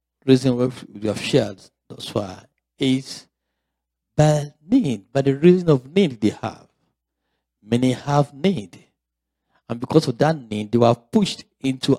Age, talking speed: 50-69, 140 wpm